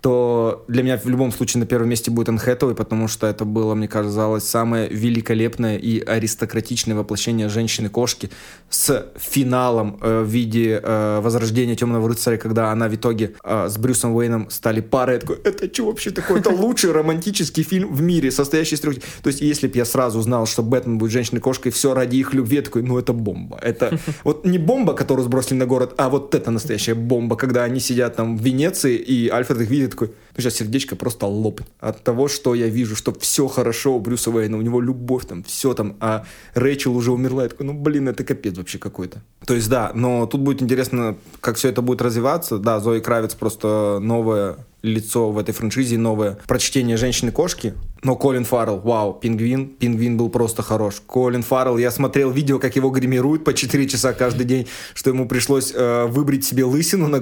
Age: 20-39